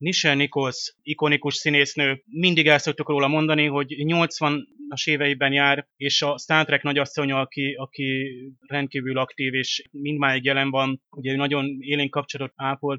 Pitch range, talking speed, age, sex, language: 130-145 Hz, 145 wpm, 30-49, male, Hungarian